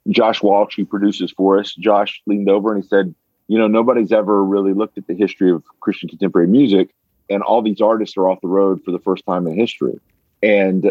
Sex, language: male, English